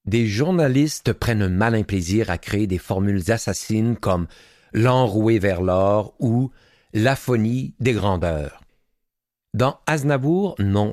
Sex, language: male, French